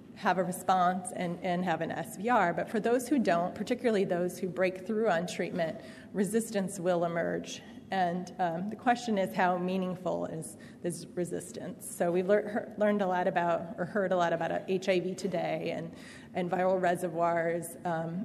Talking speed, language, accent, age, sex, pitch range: 175 wpm, English, American, 30-49, female, 180-220 Hz